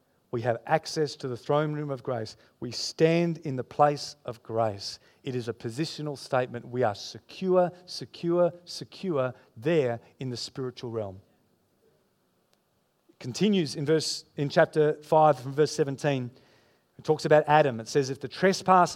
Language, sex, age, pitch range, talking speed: English, male, 40-59, 135-190 Hz, 160 wpm